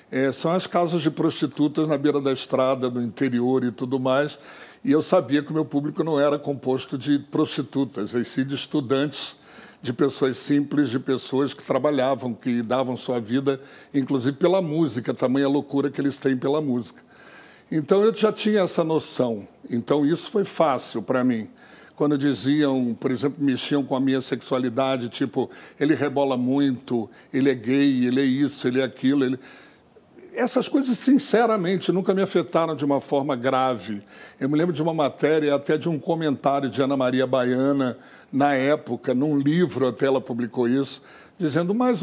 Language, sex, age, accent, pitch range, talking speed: Portuguese, male, 60-79, Brazilian, 130-165 Hz, 175 wpm